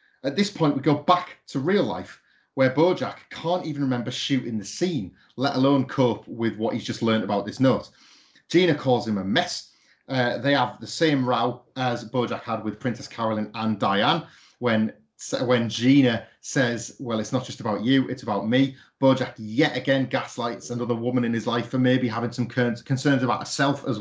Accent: British